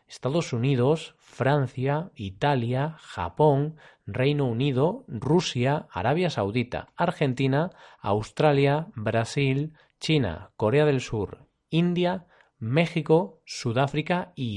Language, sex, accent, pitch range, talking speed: Spanish, male, Spanish, 120-155 Hz, 85 wpm